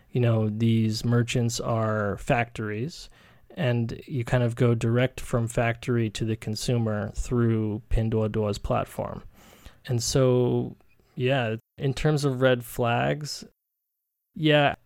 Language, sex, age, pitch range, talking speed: English, male, 20-39, 110-130 Hz, 115 wpm